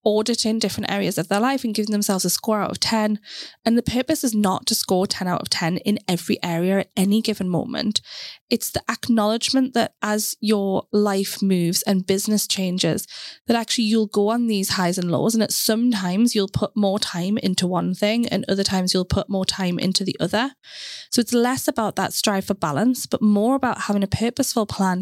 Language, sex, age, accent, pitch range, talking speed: English, female, 20-39, British, 190-225 Hz, 210 wpm